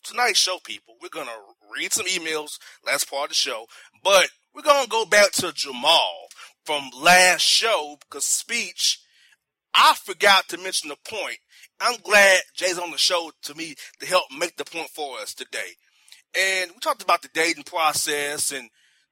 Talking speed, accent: 180 wpm, American